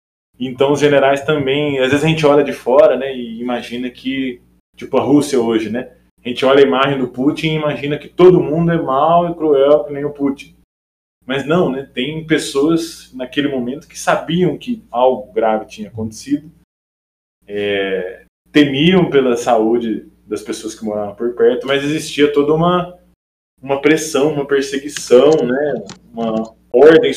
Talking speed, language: 170 wpm, Portuguese